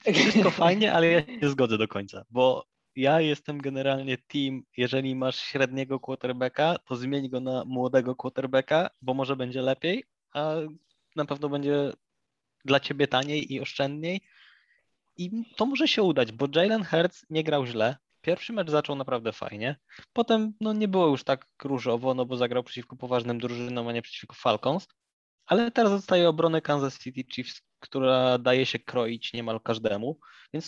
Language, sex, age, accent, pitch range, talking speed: Polish, male, 20-39, native, 125-155 Hz, 165 wpm